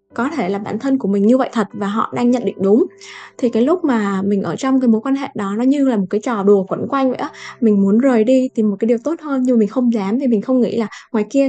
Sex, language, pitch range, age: female, Vietnamese, 205-260 Hz, 10-29